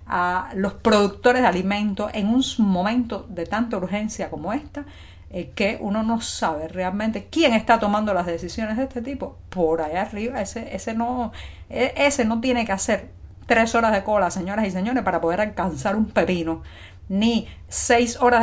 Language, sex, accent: Spanish, female, American